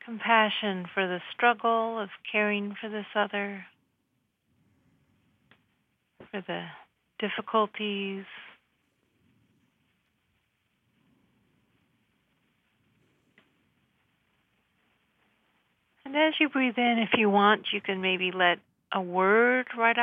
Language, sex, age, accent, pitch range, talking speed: English, female, 40-59, American, 195-230 Hz, 80 wpm